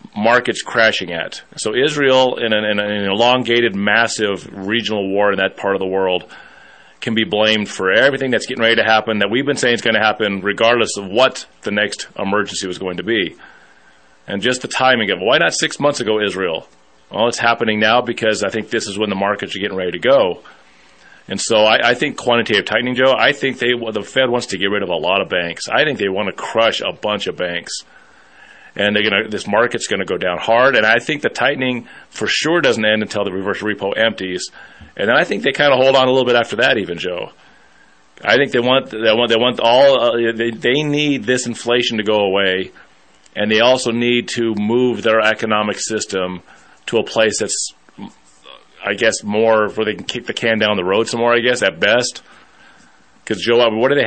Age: 30-49